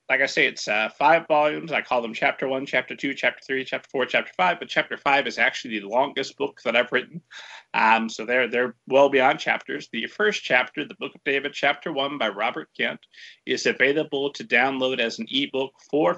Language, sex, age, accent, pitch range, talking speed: English, male, 40-59, American, 135-170 Hz, 215 wpm